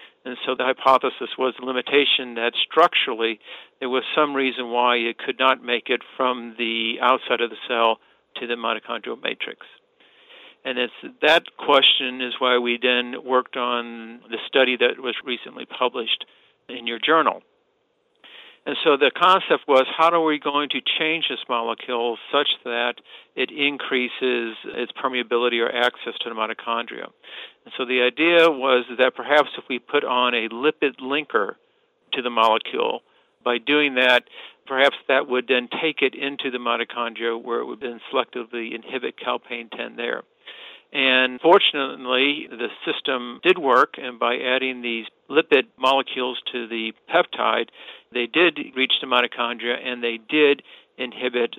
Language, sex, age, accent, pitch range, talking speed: English, male, 50-69, American, 120-140 Hz, 155 wpm